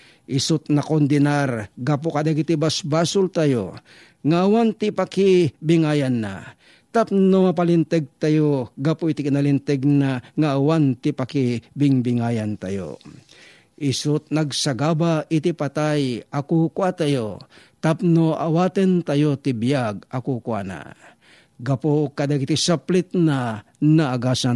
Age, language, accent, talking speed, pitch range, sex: 50-69, Filipino, native, 100 wpm, 135-165 Hz, male